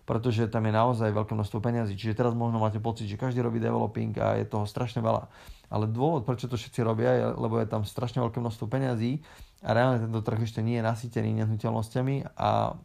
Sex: male